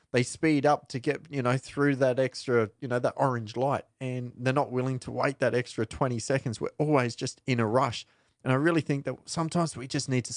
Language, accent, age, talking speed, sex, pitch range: English, Australian, 30-49, 235 wpm, male, 115-145 Hz